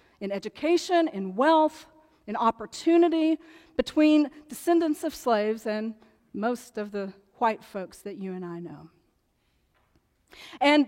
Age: 40-59